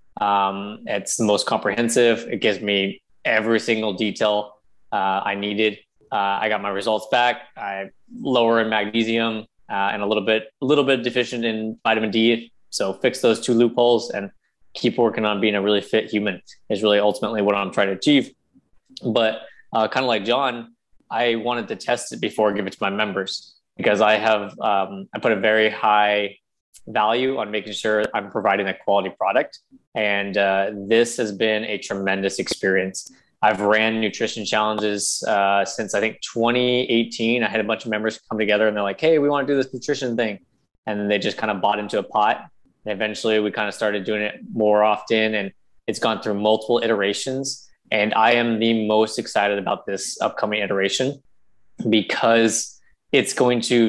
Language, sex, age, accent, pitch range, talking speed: English, male, 20-39, American, 105-115 Hz, 190 wpm